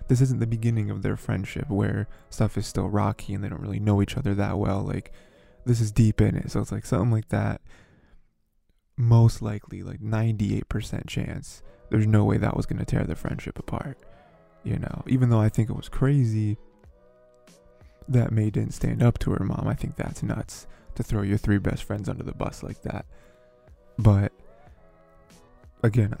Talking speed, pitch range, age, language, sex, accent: 190 wpm, 100-125 Hz, 20-39, English, male, American